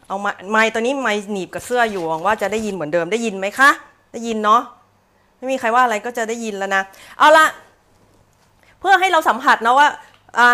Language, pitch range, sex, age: Thai, 165-245 Hz, female, 30-49